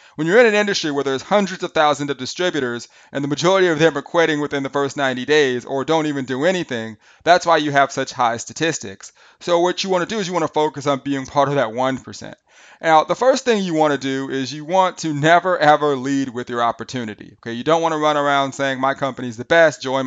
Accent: American